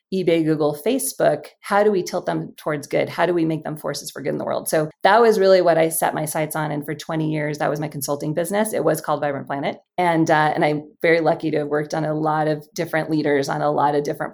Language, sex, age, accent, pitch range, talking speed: English, female, 20-39, American, 150-170 Hz, 270 wpm